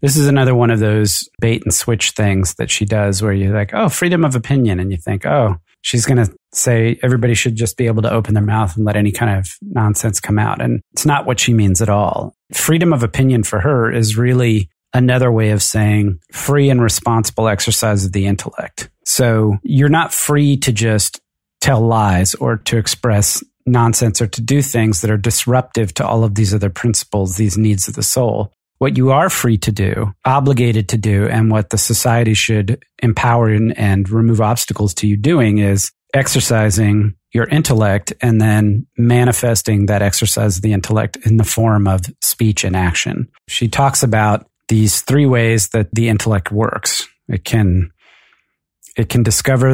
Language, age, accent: English, 40-59, American